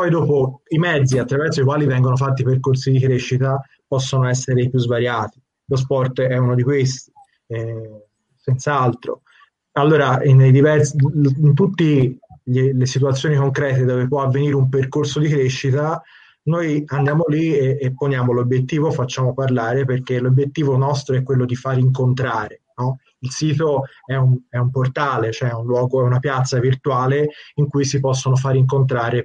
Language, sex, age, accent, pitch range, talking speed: Italian, male, 30-49, native, 125-145 Hz, 160 wpm